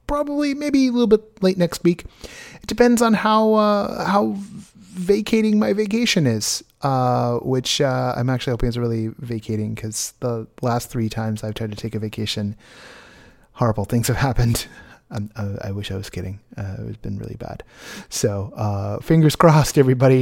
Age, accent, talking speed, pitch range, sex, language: 30-49, American, 175 wpm, 110-160 Hz, male, English